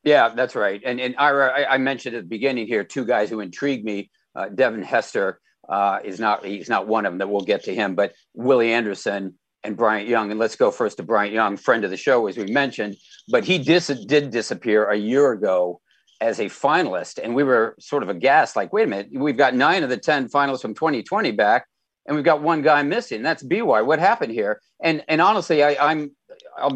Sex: male